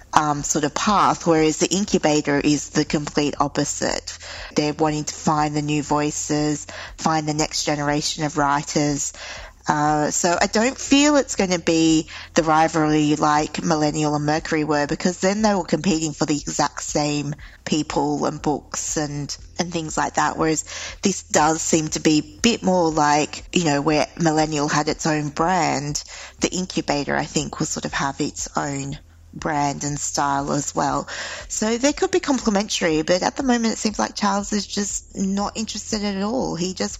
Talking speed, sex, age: 180 wpm, female, 20-39